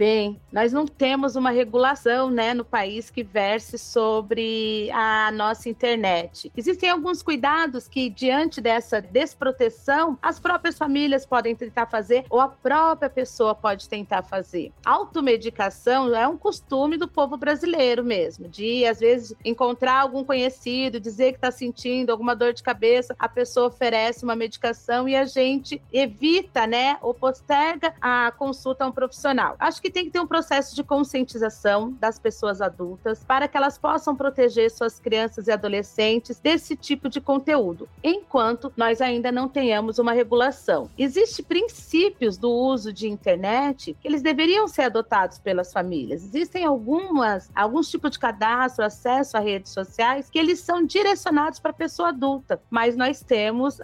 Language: Portuguese